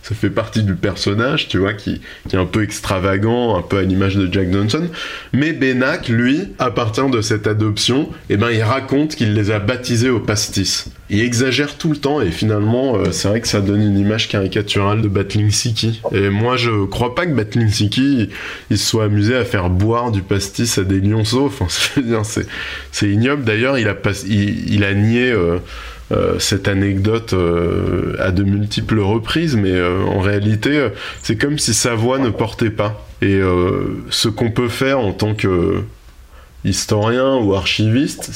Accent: French